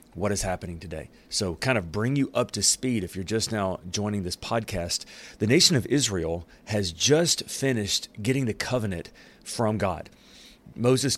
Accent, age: American, 30-49